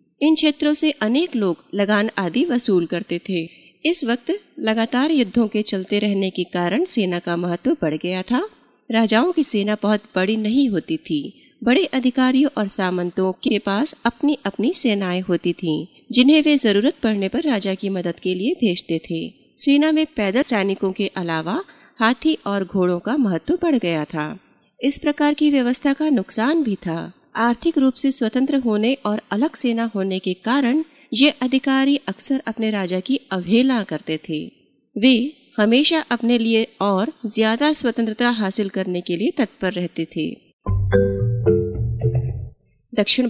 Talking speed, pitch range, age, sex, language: 155 wpm, 185-280 Hz, 30-49, female, Hindi